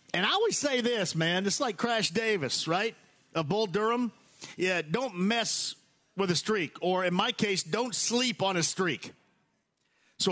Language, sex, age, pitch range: English, male, 50-69, 155-205 Hz